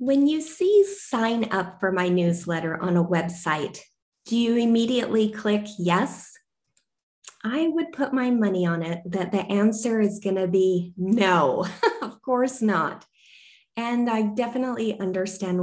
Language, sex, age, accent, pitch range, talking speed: English, female, 20-39, American, 180-230 Hz, 145 wpm